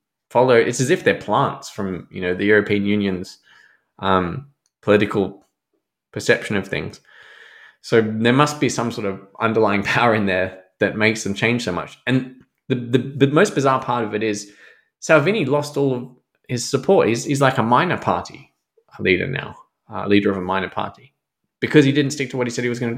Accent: Australian